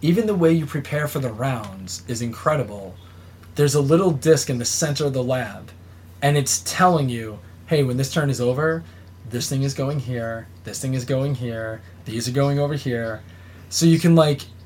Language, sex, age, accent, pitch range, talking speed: English, male, 20-39, American, 110-155 Hz, 200 wpm